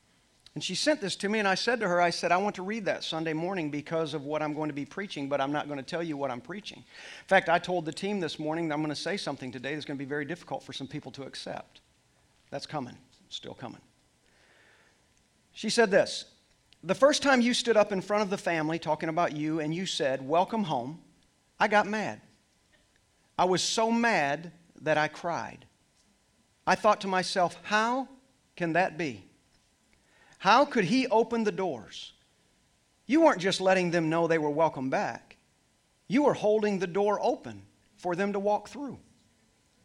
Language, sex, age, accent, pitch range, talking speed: English, male, 40-59, American, 160-225 Hz, 205 wpm